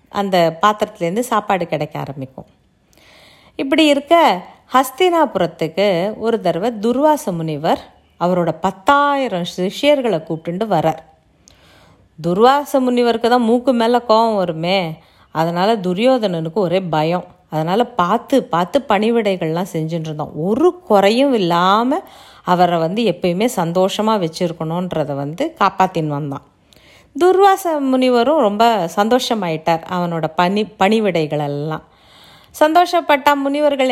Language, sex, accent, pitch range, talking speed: Tamil, female, native, 170-245 Hz, 90 wpm